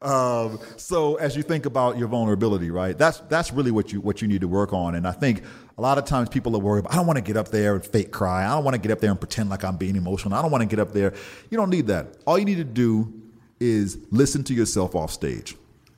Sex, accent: male, American